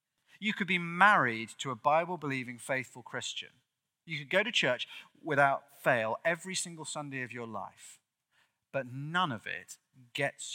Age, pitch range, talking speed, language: 30-49, 115-155 Hz, 155 wpm, English